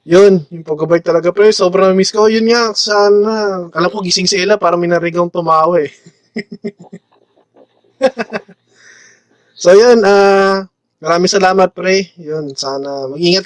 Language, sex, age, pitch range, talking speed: Filipino, male, 20-39, 145-190 Hz, 125 wpm